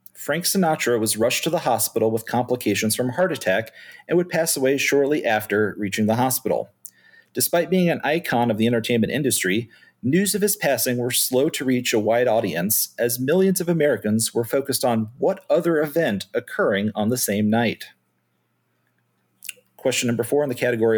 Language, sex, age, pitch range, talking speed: English, male, 40-59, 110-160 Hz, 175 wpm